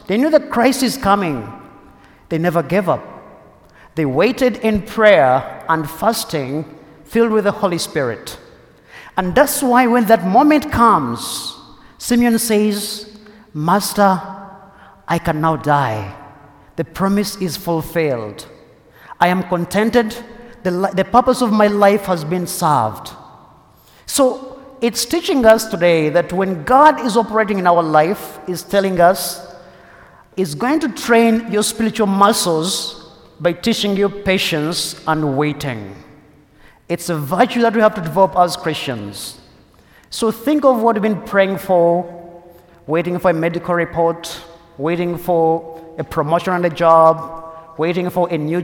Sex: male